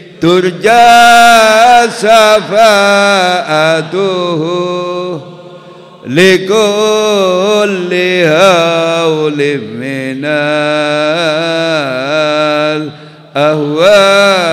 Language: Indonesian